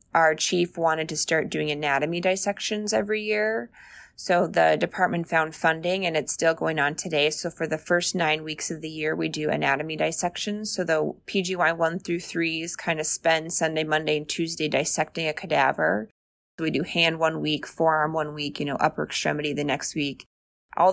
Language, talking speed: English, 190 wpm